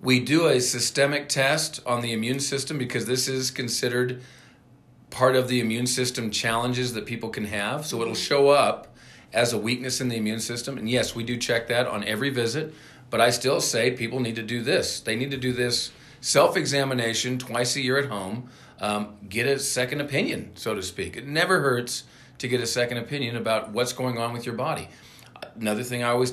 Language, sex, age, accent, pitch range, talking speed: English, male, 40-59, American, 115-135 Hz, 205 wpm